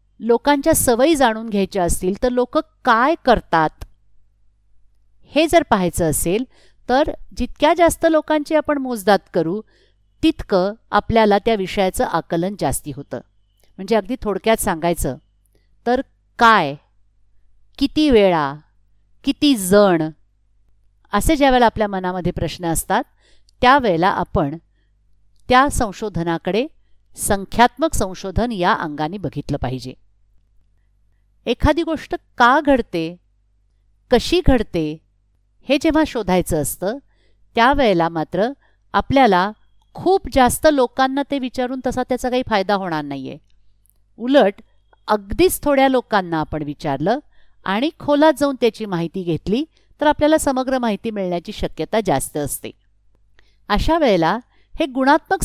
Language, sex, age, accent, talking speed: Marathi, female, 50-69, native, 110 wpm